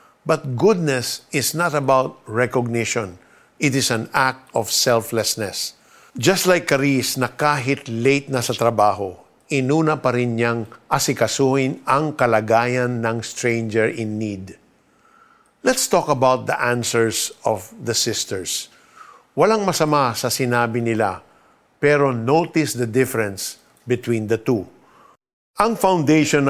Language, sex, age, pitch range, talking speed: Filipino, male, 50-69, 115-145 Hz, 120 wpm